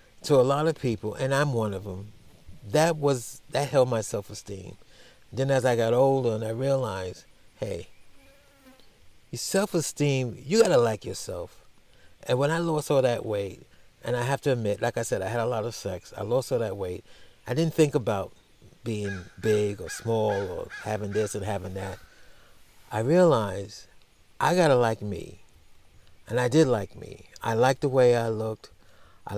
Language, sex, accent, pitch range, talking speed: English, male, American, 95-125 Hz, 185 wpm